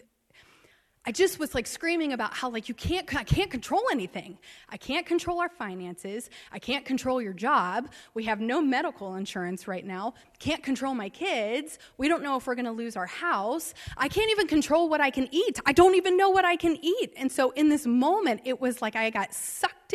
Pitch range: 210-290 Hz